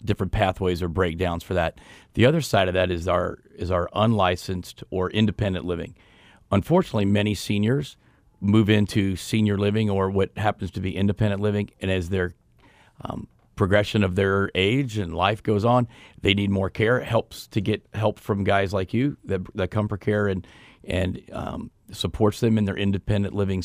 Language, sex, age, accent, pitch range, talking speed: English, male, 40-59, American, 95-110 Hz, 180 wpm